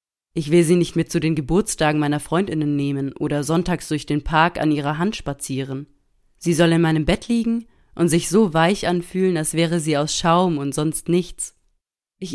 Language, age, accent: German, 30-49, German